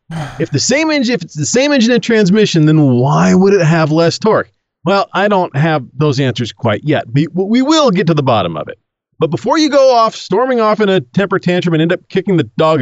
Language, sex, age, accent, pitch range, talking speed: English, male, 40-59, American, 140-205 Hz, 245 wpm